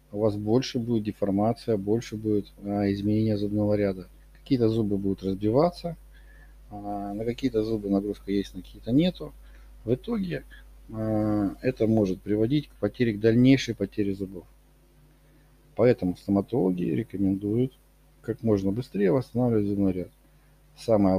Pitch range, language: 100-125 Hz, Russian